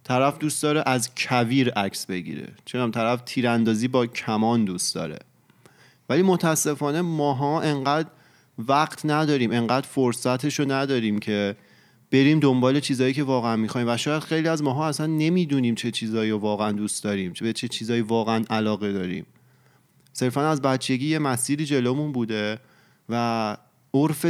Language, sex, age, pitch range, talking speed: Persian, male, 30-49, 115-140 Hz, 145 wpm